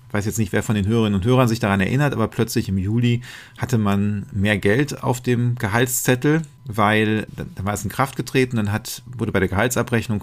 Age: 40-59